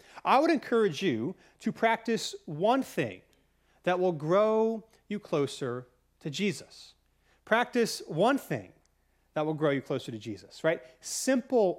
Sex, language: male, English